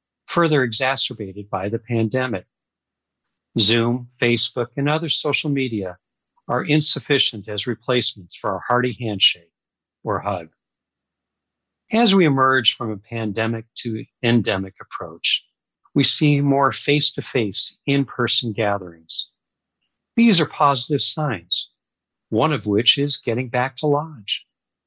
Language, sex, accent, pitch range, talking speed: English, male, American, 110-145 Hz, 115 wpm